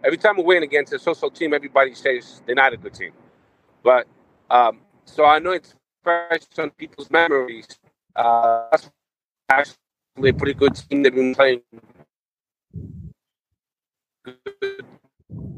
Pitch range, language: 135-170 Hz, English